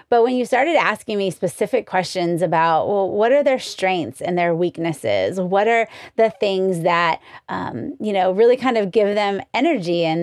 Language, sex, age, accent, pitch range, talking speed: English, female, 30-49, American, 180-225 Hz, 190 wpm